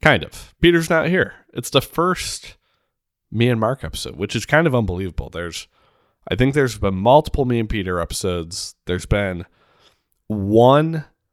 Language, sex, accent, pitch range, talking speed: English, male, American, 95-125 Hz, 160 wpm